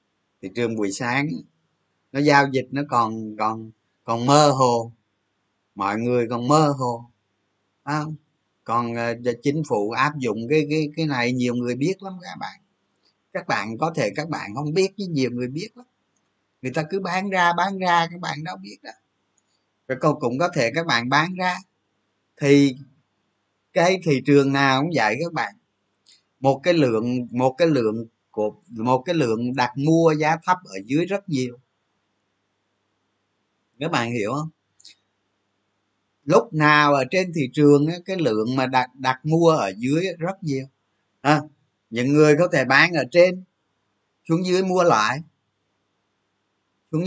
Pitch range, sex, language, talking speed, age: 110-160 Hz, male, Vietnamese, 165 wpm, 20-39